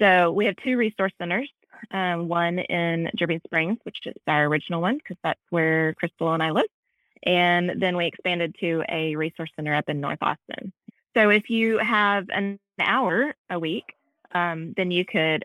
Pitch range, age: 160-195 Hz, 20-39